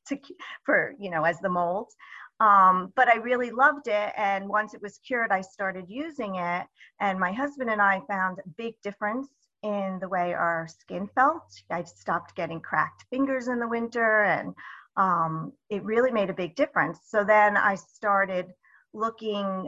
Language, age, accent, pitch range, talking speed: English, 40-59, American, 175-220 Hz, 175 wpm